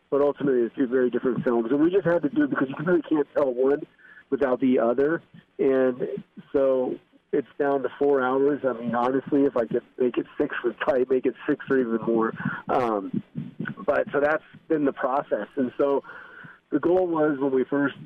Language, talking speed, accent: English, 205 wpm, American